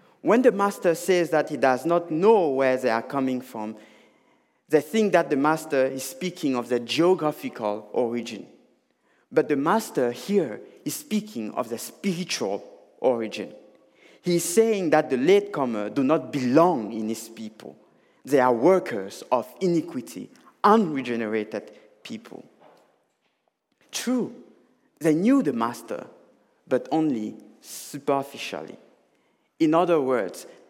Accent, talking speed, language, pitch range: French, 125 wpm, English, 130-200 Hz